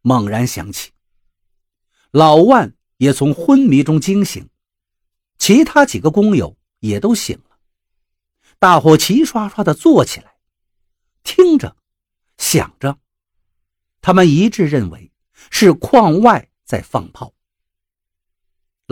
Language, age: Chinese, 50-69